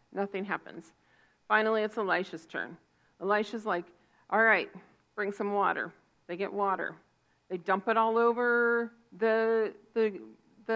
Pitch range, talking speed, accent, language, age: 185-230 Hz, 130 wpm, American, English, 40-59